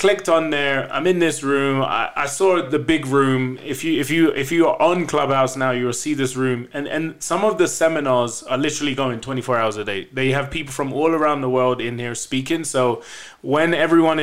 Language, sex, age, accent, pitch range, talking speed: English, male, 20-39, British, 125-155 Hz, 230 wpm